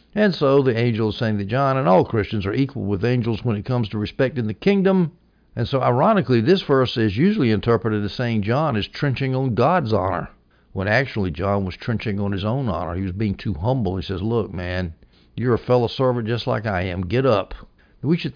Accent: American